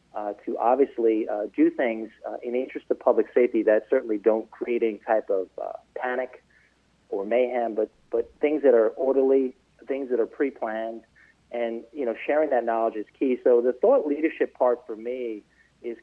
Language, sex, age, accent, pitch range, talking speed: English, male, 40-59, American, 115-135 Hz, 185 wpm